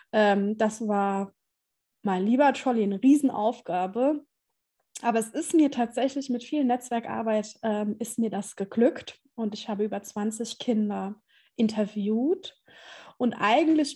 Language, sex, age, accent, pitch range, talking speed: German, female, 20-39, German, 210-255 Hz, 125 wpm